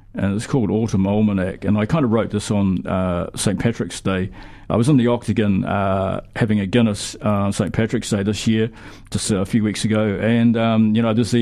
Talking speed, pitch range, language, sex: 225 wpm, 105-120 Hz, English, male